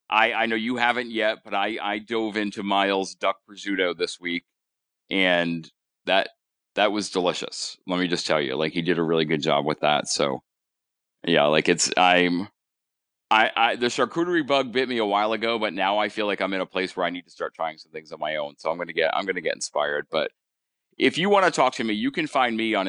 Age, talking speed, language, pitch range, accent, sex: 30-49, 240 wpm, English, 95-135 Hz, American, male